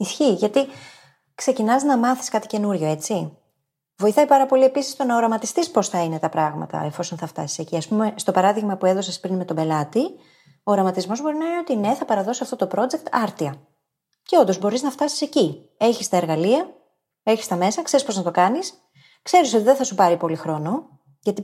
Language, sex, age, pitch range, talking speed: Greek, female, 30-49, 160-245 Hz, 205 wpm